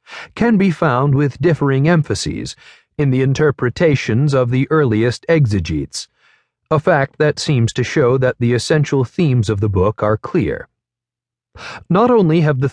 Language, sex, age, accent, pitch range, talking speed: English, male, 40-59, American, 110-150 Hz, 150 wpm